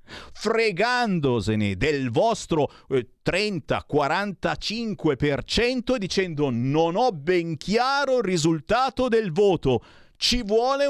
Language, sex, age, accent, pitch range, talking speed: Italian, male, 50-69, native, 105-150 Hz, 85 wpm